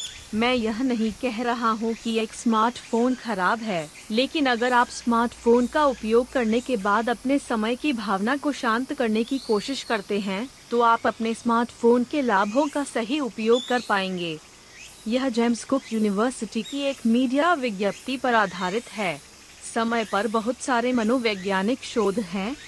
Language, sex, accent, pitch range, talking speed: Hindi, female, native, 215-250 Hz, 160 wpm